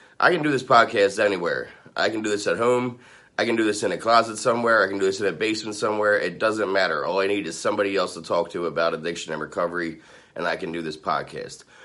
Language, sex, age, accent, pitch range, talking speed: English, male, 30-49, American, 90-120 Hz, 255 wpm